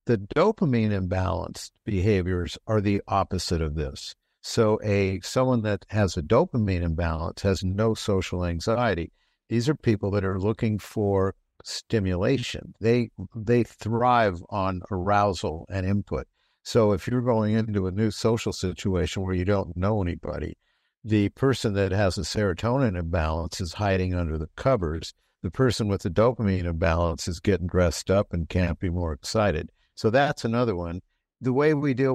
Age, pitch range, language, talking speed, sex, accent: 60-79, 90-115 Hz, English, 155 wpm, male, American